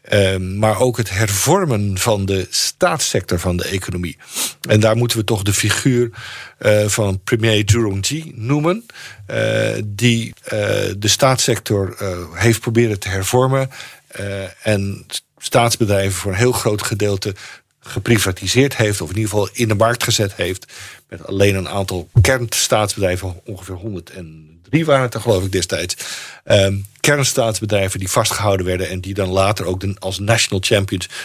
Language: Dutch